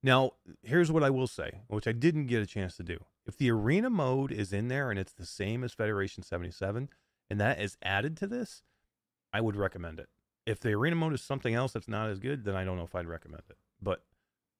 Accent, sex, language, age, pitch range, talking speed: American, male, English, 30-49, 95-130 Hz, 240 wpm